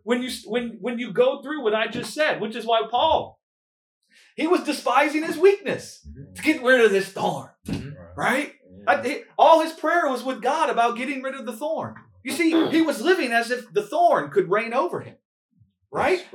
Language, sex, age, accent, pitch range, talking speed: English, male, 30-49, American, 170-260 Hz, 195 wpm